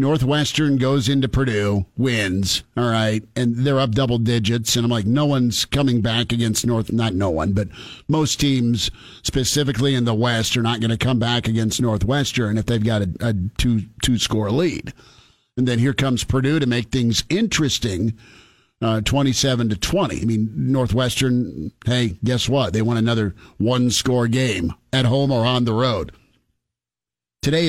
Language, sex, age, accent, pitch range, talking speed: English, male, 50-69, American, 110-130 Hz, 170 wpm